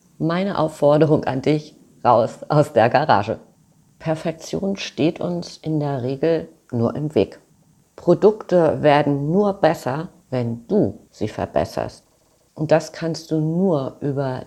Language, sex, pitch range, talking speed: German, female, 140-180 Hz, 130 wpm